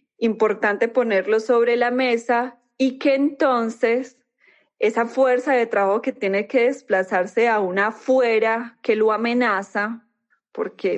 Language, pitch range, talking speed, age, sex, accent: Spanish, 195-235 Hz, 125 wpm, 20-39, female, Colombian